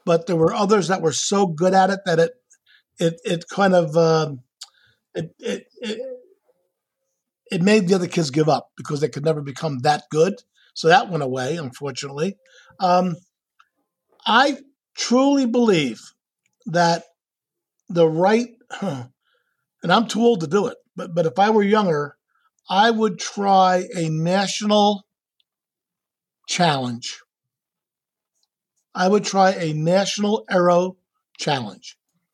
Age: 50-69